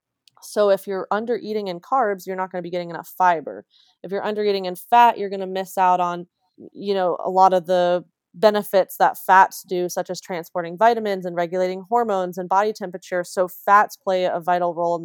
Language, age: English, 20-39